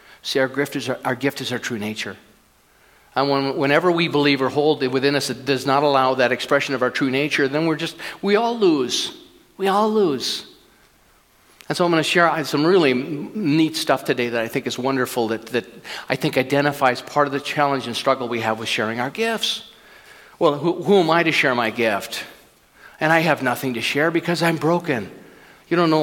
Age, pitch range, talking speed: 50-69, 115-155 Hz, 215 wpm